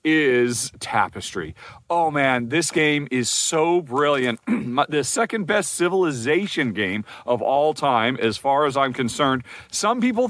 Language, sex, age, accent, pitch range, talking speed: English, male, 40-59, American, 125-180 Hz, 140 wpm